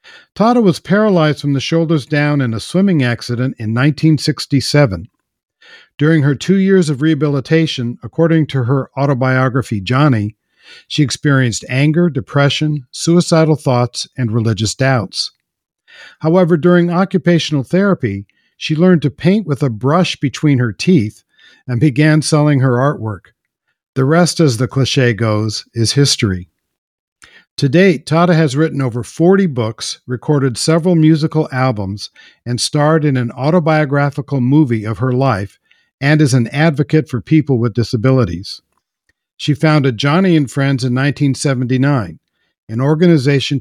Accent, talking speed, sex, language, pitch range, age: American, 135 wpm, male, English, 125-155 Hz, 50-69